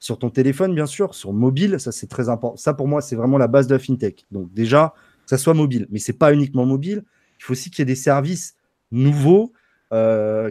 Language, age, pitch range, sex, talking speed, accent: French, 30-49, 120-160 Hz, male, 245 wpm, French